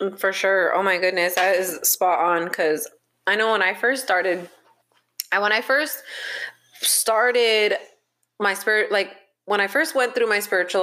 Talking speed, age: 170 wpm, 20-39